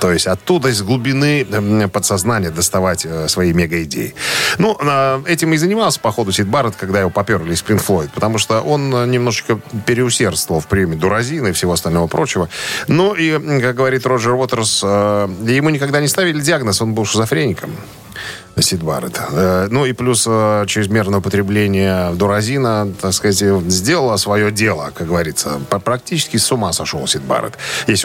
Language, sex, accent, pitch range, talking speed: Russian, male, native, 100-130 Hz, 150 wpm